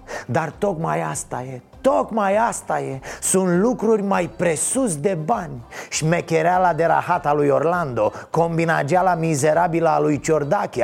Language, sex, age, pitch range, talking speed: Romanian, male, 30-49, 150-195 Hz, 135 wpm